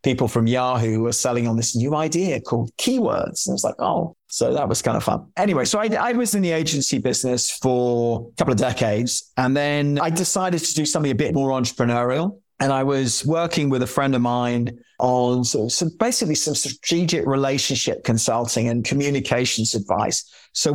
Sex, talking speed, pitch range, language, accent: male, 190 wpm, 125-150 Hz, English, British